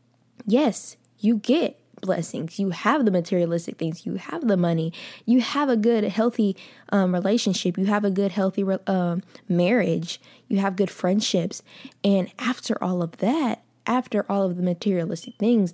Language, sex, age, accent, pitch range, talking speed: English, female, 10-29, American, 175-215 Hz, 160 wpm